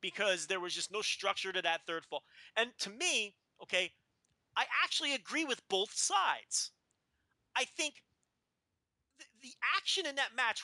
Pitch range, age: 225-330 Hz, 30-49